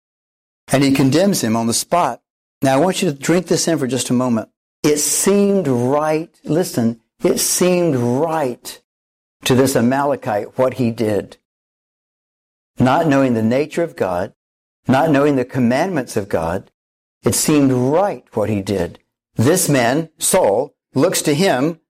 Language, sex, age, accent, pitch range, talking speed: English, male, 60-79, American, 115-155 Hz, 155 wpm